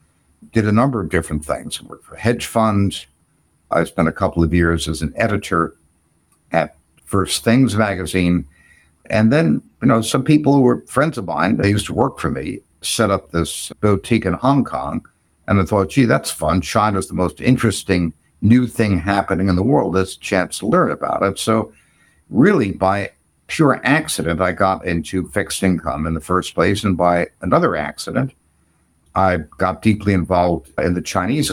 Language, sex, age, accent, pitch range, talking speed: English, male, 60-79, American, 80-105 Hz, 185 wpm